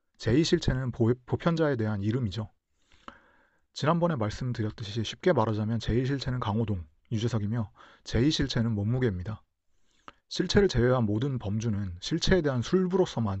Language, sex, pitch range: Korean, male, 105-140 Hz